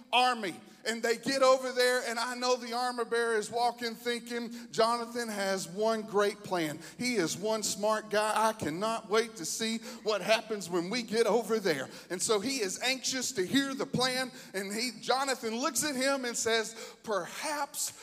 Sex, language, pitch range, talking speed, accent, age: male, English, 215-275 Hz, 185 wpm, American, 40-59